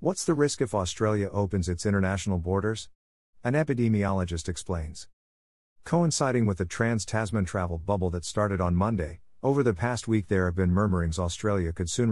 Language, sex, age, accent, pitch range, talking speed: English, male, 50-69, American, 85-115 Hz, 165 wpm